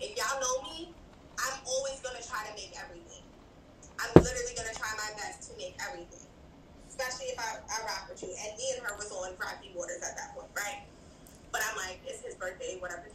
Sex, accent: female, American